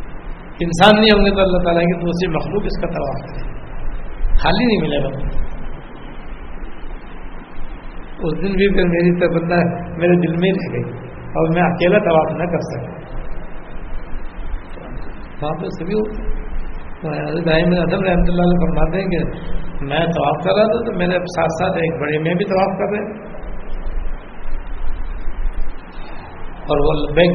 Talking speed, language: 115 wpm, Urdu